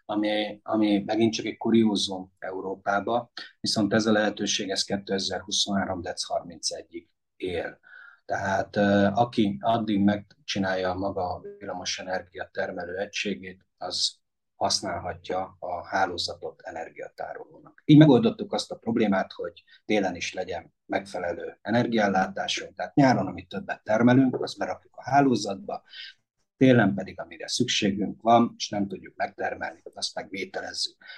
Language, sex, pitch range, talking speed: Hungarian, male, 100-125 Hz, 120 wpm